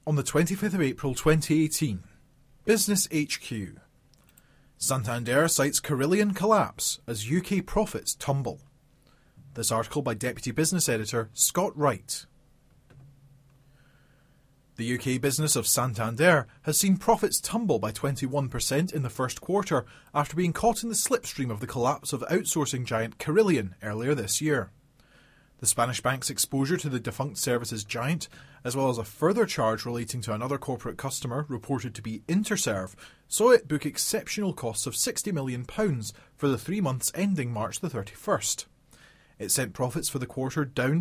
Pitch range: 125-155 Hz